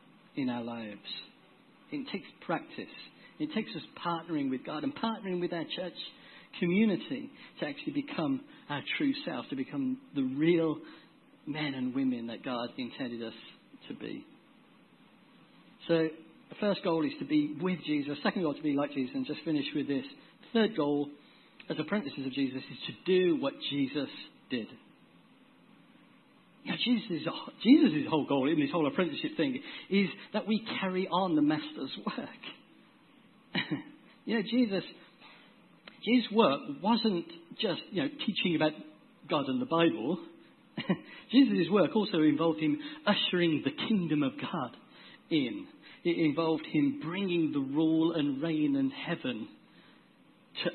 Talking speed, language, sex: 145 wpm, English, male